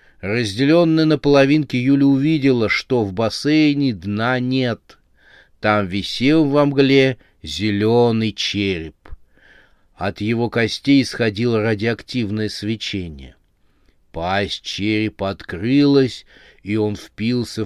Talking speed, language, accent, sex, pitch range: 95 wpm, Russian, native, male, 95-140 Hz